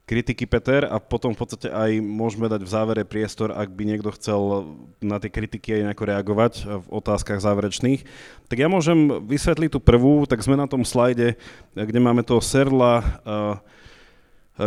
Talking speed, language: 170 wpm, Slovak